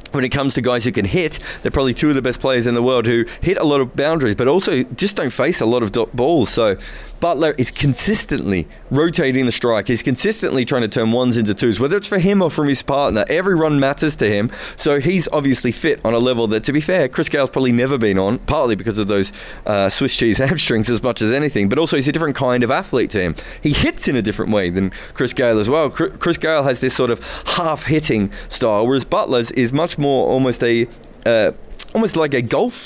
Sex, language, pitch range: male, English, 120-150 Hz